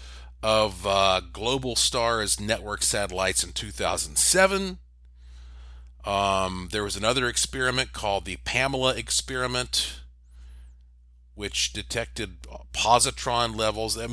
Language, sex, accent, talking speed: English, male, American, 95 wpm